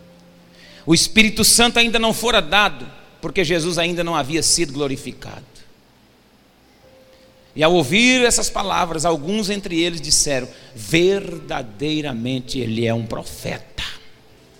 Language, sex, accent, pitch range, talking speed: Portuguese, male, Brazilian, 135-215 Hz, 115 wpm